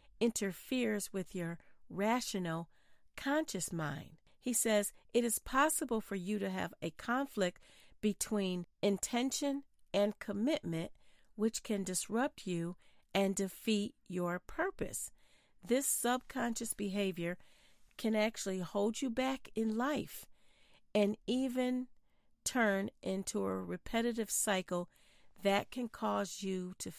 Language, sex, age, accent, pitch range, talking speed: English, female, 40-59, American, 180-230 Hz, 115 wpm